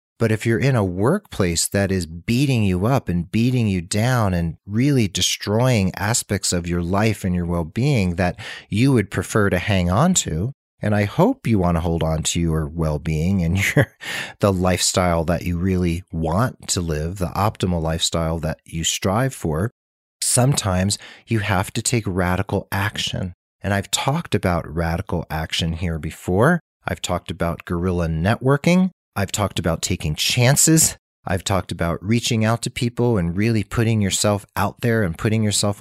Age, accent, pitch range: 40-59, American, 85-115 Hz